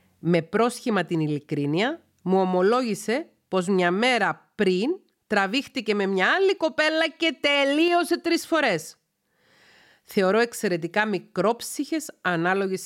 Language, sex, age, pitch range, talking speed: Greek, female, 40-59, 165-220 Hz, 105 wpm